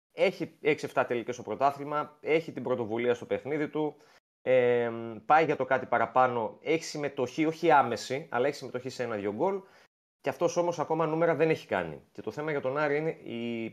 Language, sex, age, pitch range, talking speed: Greek, male, 30-49, 105-145 Hz, 190 wpm